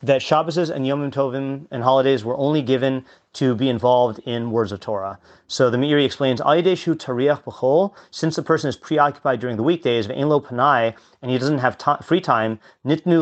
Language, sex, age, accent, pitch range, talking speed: English, male, 30-49, American, 120-145 Hz, 175 wpm